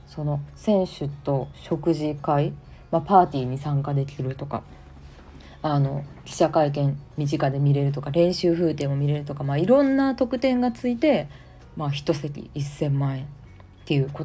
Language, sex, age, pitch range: Japanese, female, 20-39, 140-170 Hz